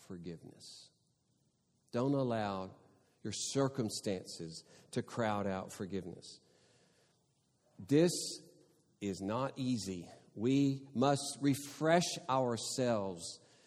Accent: American